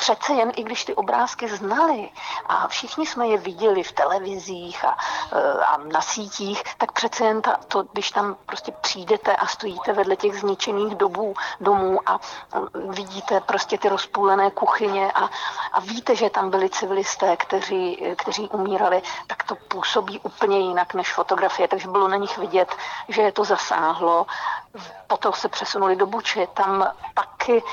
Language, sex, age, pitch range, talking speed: Slovak, female, 50-69, 195-230 Hz, 160 wpm